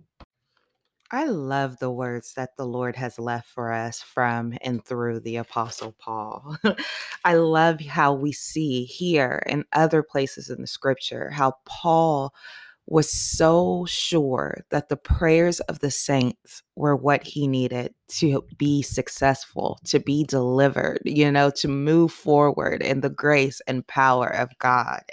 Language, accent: English, American